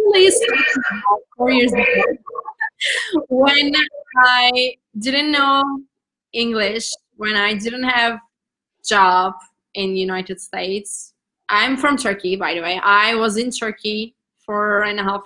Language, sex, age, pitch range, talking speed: English, female, 20-39, 205-250 Hz, 105 wpm